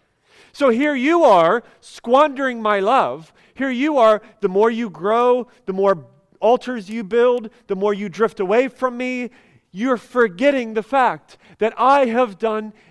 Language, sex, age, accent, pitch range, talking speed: English, male, 30-49, American, 195-245 Hz, 160 wpm